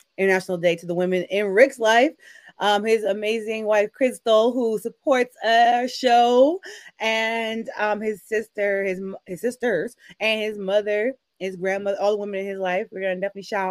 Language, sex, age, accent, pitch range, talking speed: English, female, 20-39, American, 195-275 Hz, 170 wpm